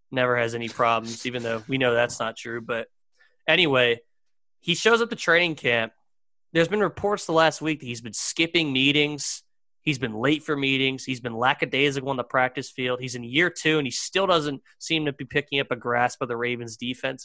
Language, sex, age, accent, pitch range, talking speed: English, male, 20-39, American, 120-145 Hz, 210 wpm